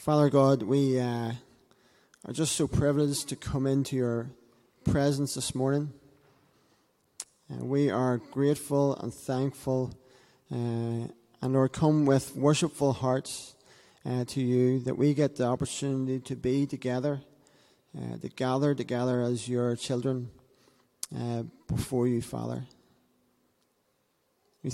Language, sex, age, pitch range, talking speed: English, male, 30-49, 125-140 Hz, 125 wpm